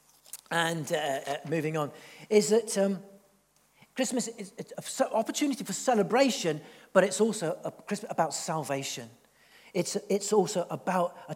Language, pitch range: English, 185-240 Hz